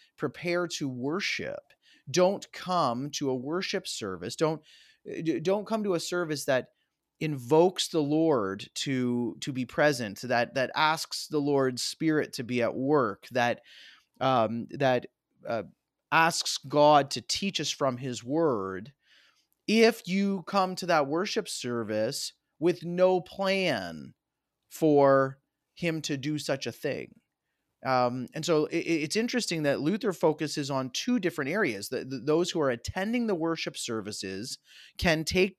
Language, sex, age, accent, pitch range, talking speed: English, male, 30-49, American, 130-175 Hz, 145 wpm